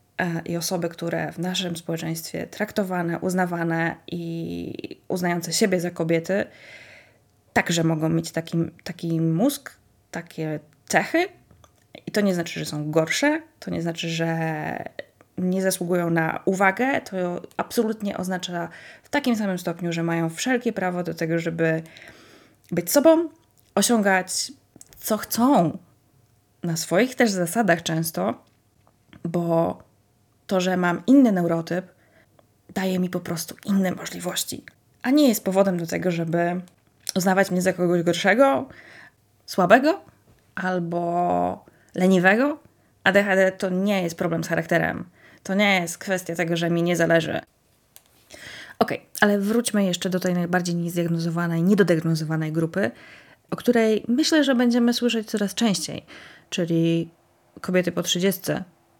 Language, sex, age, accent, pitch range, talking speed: Polish, female, 20-39, native, 165-195 Hz, 130 wpm